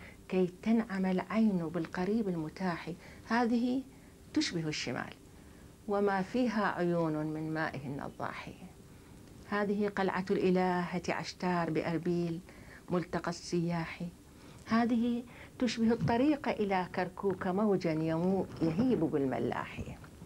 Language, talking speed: Arabic, 85 wpm